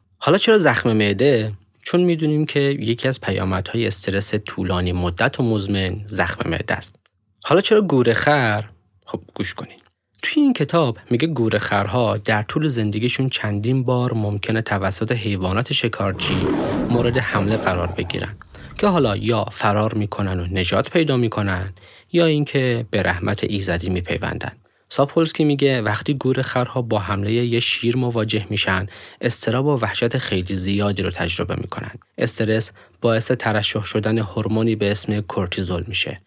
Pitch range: 100-125 Hz